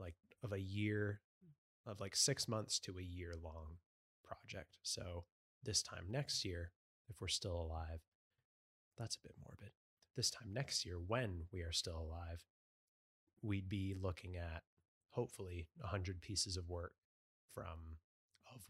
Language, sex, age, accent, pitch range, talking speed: English, male, 30-49, American, 85-105 Hz, 150 wpm